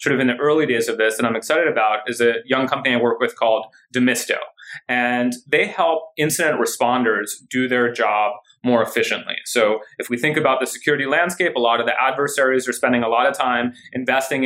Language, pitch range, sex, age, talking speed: English, 125-165 Hz, male, 30-49, 210 wpm